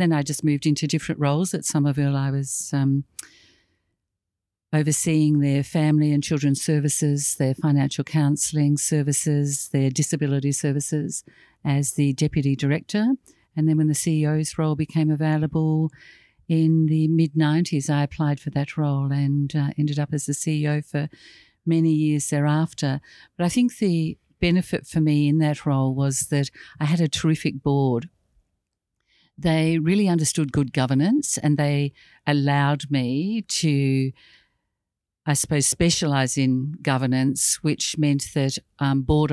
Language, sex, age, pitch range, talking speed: English, female, 50-69, 140-155 Hz, 140 wpm